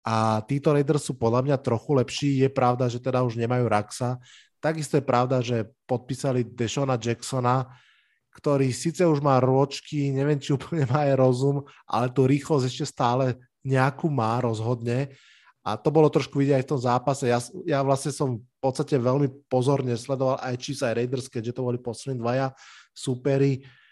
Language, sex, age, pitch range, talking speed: Slovak, male, 20-39, 120-145 Hz, 175 wpm